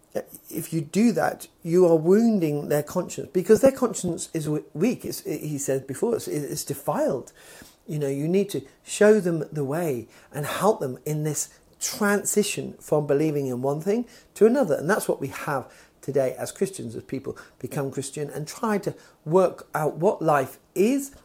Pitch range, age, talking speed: 145-200 Hz, 50-69, 175 wpm